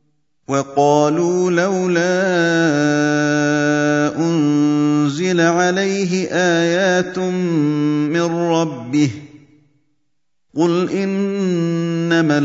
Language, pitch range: Indonesian, 150-180 Hz